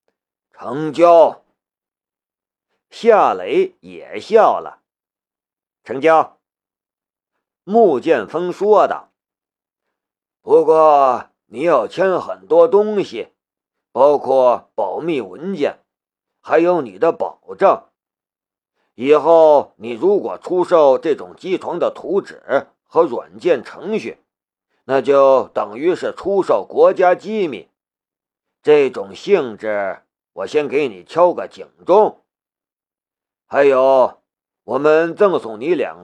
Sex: male